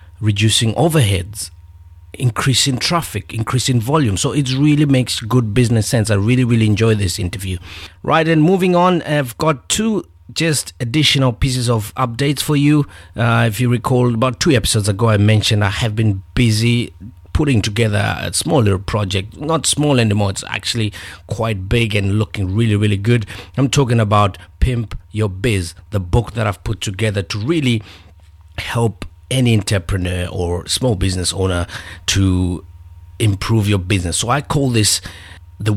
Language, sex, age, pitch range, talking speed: English, male, 50-69, 90-120 Hz, 160 wpm